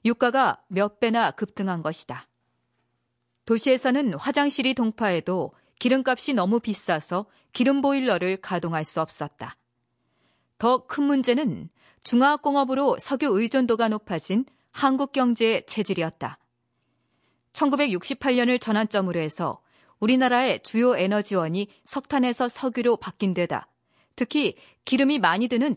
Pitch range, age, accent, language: 185-260 Hz, 40-59, native, Korean